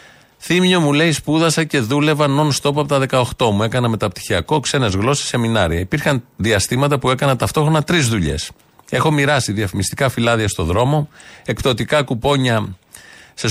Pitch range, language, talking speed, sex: 110-145 Hz, Greek, 140 wpm, male